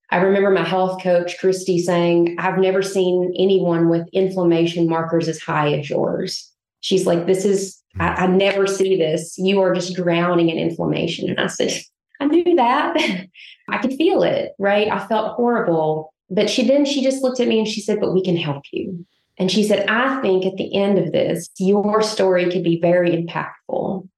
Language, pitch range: English, 170-195 Hz